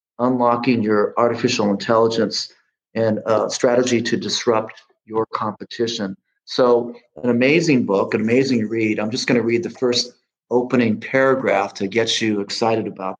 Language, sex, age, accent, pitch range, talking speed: English, male, 40-59, American, 110-130 Hz, 140 wpm